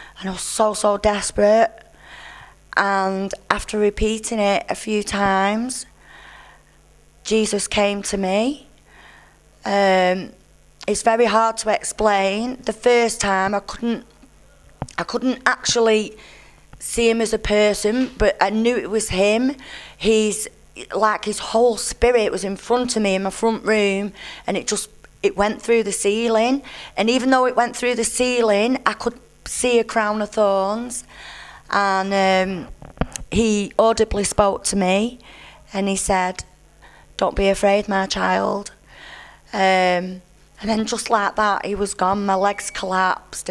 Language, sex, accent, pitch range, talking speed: English, female, British, 190-225 Hz, 145 wpm